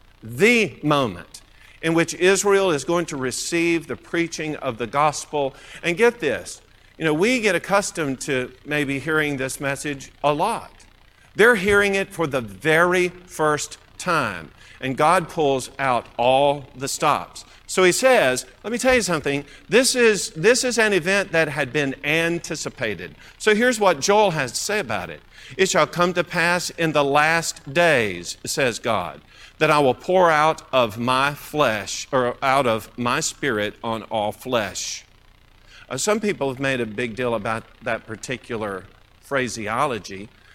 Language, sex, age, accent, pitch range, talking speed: English, male, 50-69, American, 115-165 Hz, 160 wpm